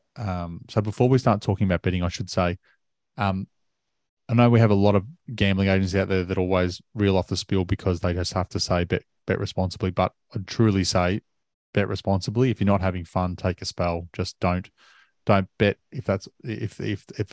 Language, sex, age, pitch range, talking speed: English, male, 20-39, 90-105 Hz, 210 wpm